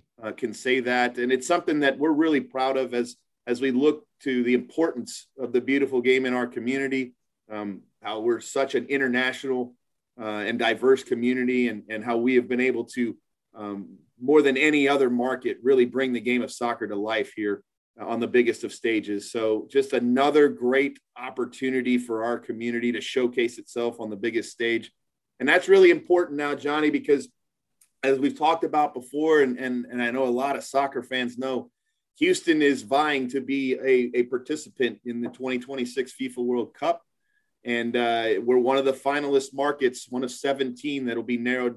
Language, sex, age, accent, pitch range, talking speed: English, male, 30-49, American, 120-145 Hz, 185 wpm